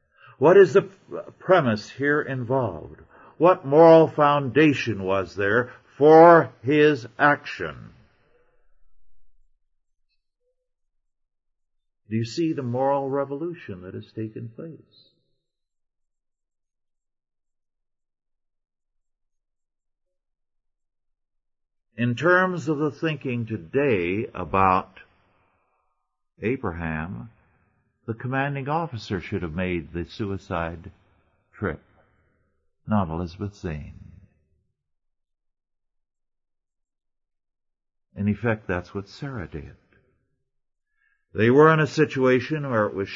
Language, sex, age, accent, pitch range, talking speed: English, male, 50-69, American, 95-140 Hz, 80 wpm